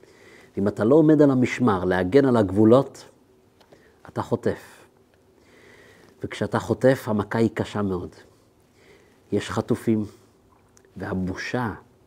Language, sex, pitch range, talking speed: Hebrew, male, 100-125 Hz, 100 wpm